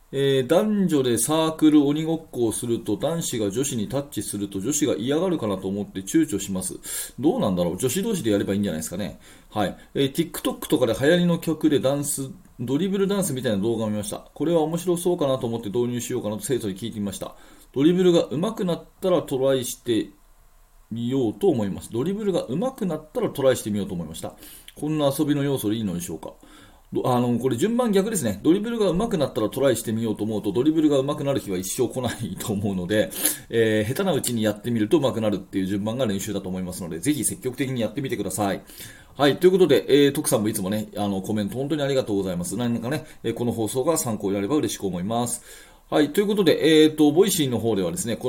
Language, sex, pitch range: Japanese, male, 105-155 Hz